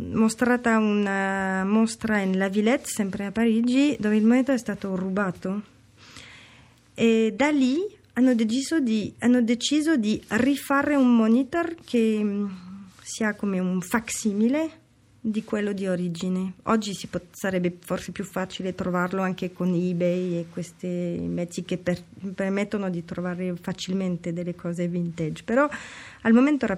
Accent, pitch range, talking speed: native, 185-255 Hz, 135 wpm